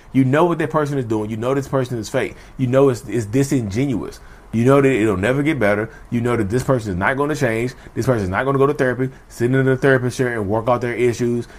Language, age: English, 30-49